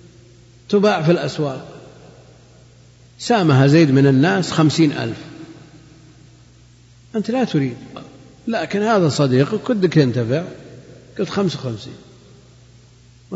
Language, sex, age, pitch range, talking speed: Arabic, male, 50-69, 120-150 Hz, 90 wpm